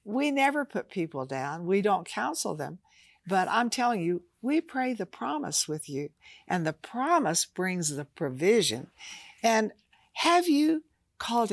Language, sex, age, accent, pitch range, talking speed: English, female, 60-79, American, 175-270 Hz, 150 wpm